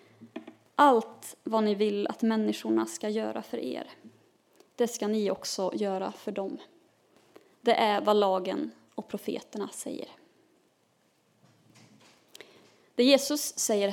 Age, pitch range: 20-39, 210-275 Hz